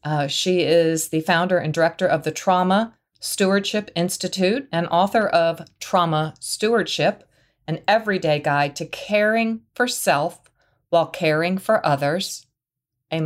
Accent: American